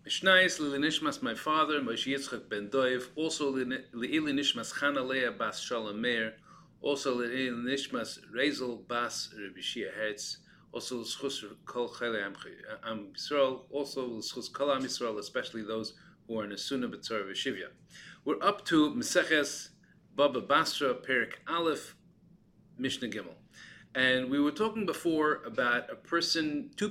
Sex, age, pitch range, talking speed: male, 40-59, 120-170 Hz, 125 wpm